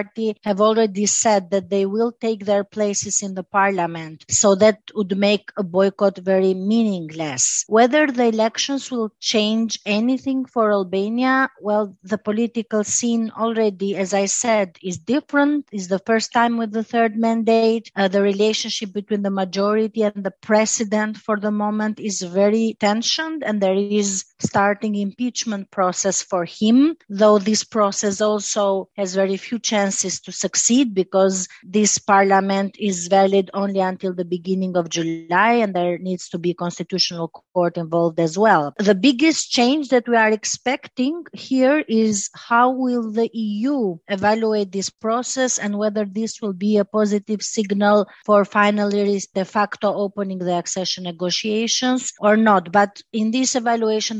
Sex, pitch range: female, 195-225 Hz